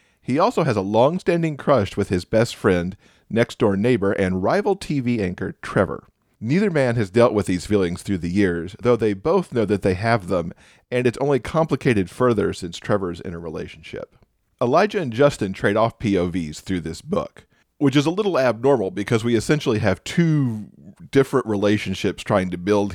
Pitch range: 95-120 Hz